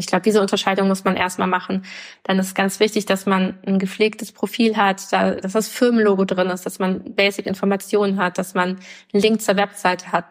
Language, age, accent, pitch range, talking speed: German, 20-39, German, 185-210 Hz, 205 wpm